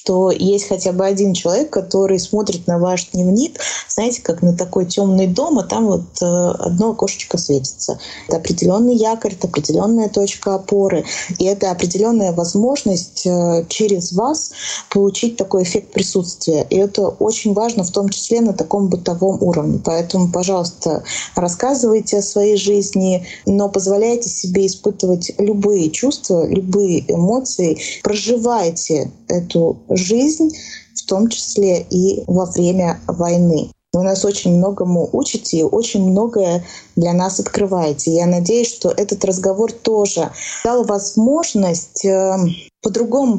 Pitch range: 180-220 Hz